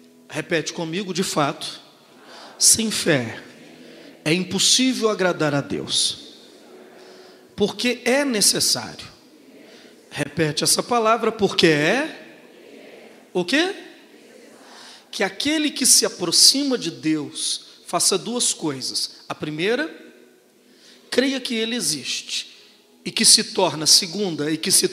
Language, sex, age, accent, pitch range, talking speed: Portuguese, male, 40-59, Brazilian, 150-225 Hz, 110 wpm